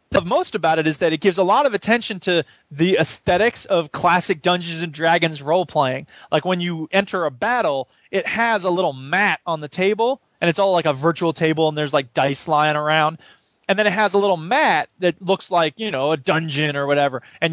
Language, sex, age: English, male, 20-39